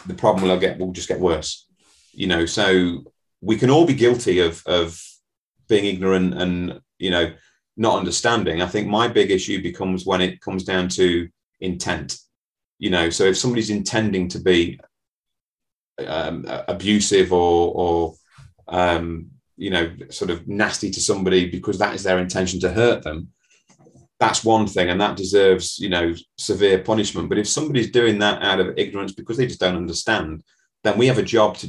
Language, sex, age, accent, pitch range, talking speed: English, male, 30-49, British, 90-105 Hz, 180 wpm